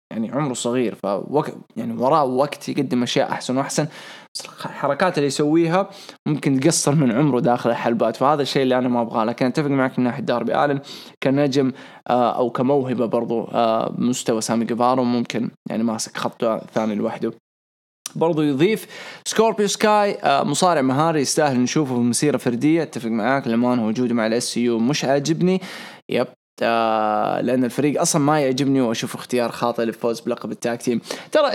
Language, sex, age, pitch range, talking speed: English, male, 20-39, 120-160 Hz, 150 wpm